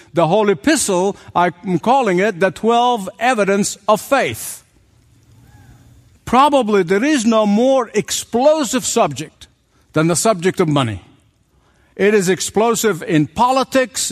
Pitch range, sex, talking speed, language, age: 170-235 Hz, male, 120 wpm, English, 60-79